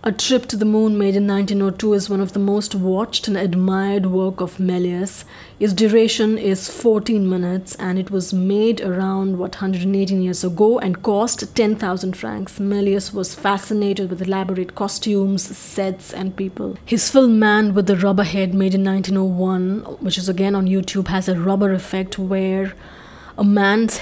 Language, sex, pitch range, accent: English, female, 185-205 Hz, Indian